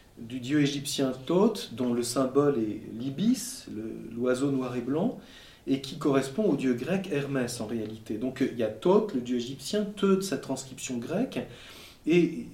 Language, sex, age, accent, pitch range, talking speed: French, male, 40-59, French, 125-175 Hz, 170 wpm